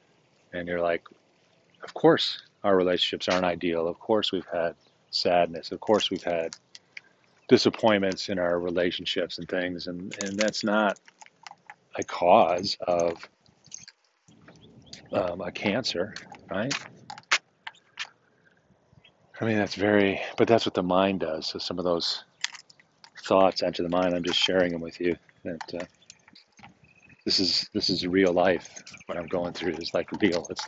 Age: 40-59